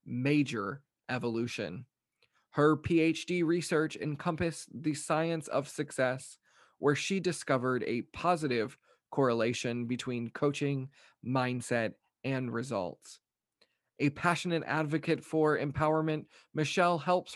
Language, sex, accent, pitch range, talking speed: English, male, American, 130-160 Hz, 95 wpm